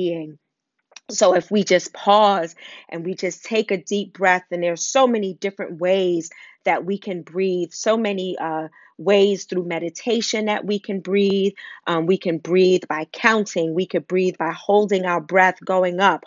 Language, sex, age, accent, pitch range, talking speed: English, female, 30-49, American, 175-200 Hz, 175 wpm